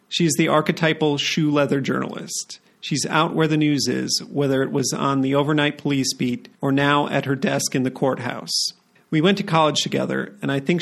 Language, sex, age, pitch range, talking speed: English, male, 40-59, 130-160 Hz, 195 wpm